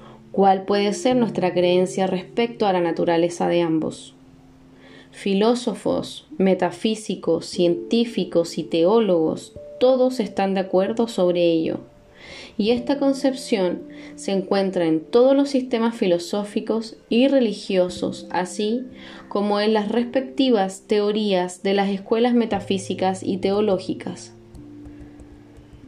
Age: 10-29